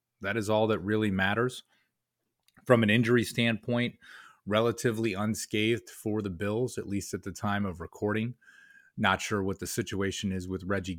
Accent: American